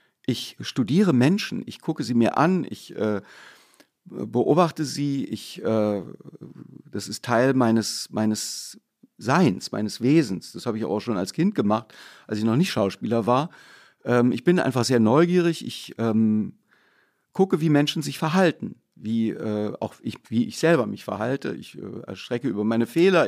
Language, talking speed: German, 155 wpm